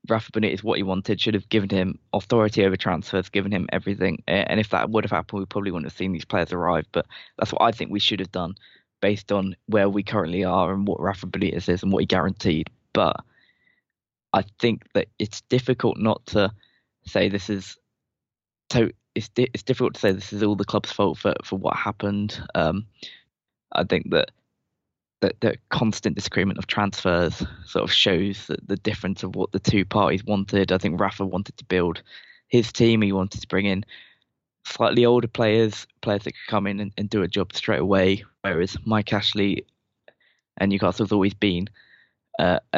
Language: English